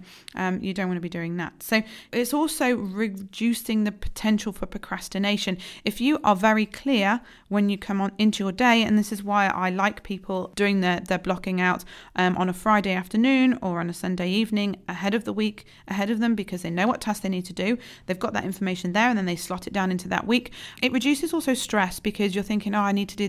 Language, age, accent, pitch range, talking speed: English, 40-59, British, 185-225 Hz, 235 wpm